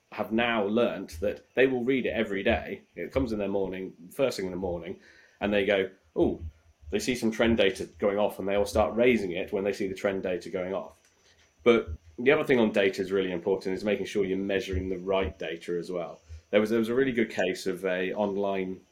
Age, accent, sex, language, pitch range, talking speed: 30-49, British, male, English, 95-115 Hz, 240 wpm